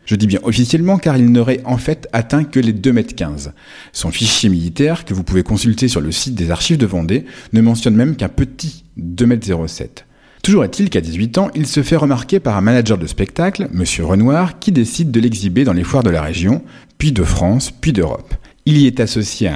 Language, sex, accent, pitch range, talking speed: French, male, French, 95-135 Hz, 210 wpm